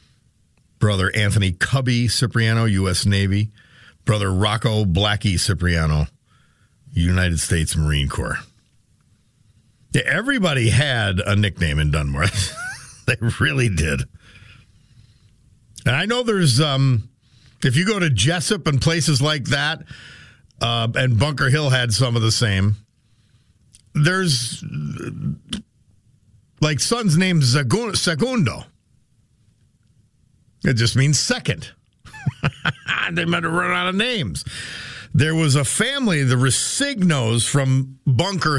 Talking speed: 110 wpm